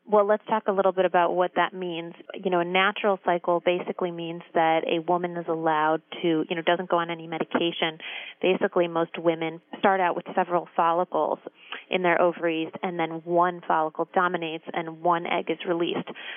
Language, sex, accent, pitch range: English, female, American, 160-180 Hz